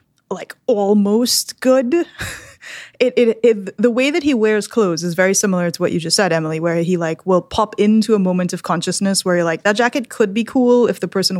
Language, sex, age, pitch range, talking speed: English, female, 20-39, 175-205 Hz, 220 wpm